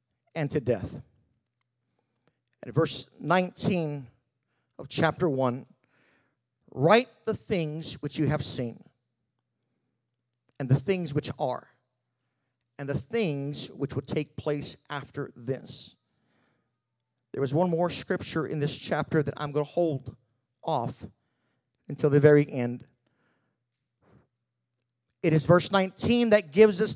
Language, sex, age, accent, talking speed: English, male, 50-69, American, 120 wpm